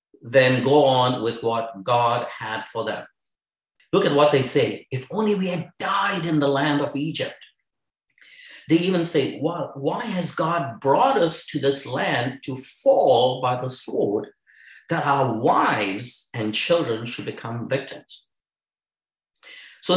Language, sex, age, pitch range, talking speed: English, male, 50-69, 120-190 Hz, 145 wpm